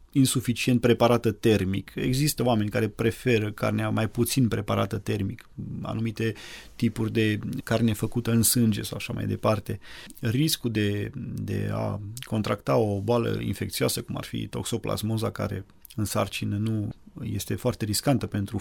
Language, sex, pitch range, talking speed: Romanian, male, 105-120 Hz, 140 wpm